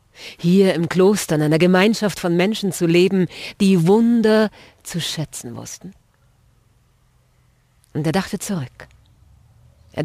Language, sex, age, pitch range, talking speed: German, female, 40-59, 125-175 Hz, 120 wpm